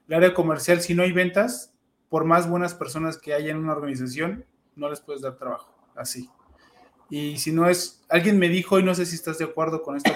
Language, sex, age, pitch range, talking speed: Spanish, male, 20-39, 145-175 Hz, 225 wpm